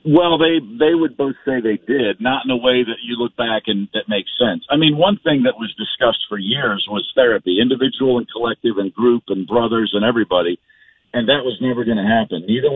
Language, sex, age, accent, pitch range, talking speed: English, male, 50-69, American, 105-130 Hz, 225 wpm